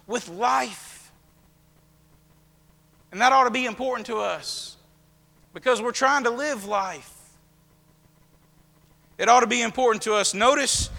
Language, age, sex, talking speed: English, 40-59, male, 130 wpm